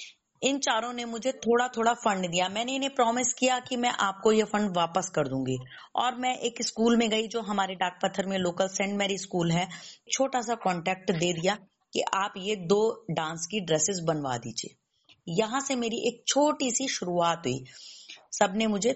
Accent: native